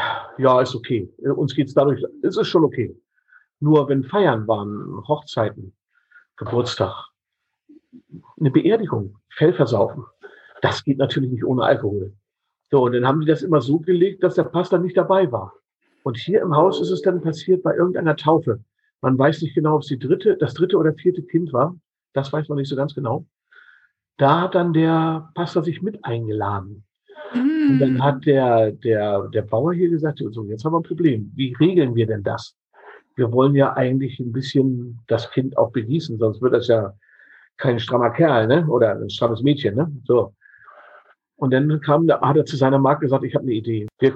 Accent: German